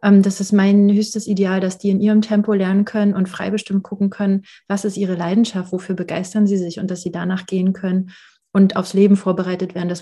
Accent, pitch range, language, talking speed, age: German, 185-205 Hz, German, 220 wpm, 30-49